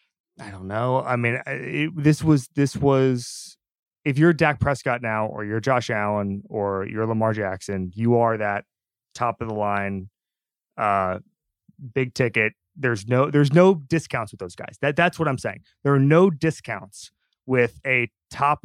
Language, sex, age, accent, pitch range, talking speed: English, male, 30-49, American, 105-140 Hz, 170 wpm